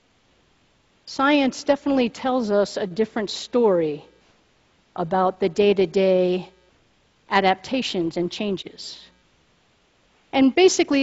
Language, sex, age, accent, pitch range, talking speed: English, female, 50-69, American, 205-260 Hz, 80 wpm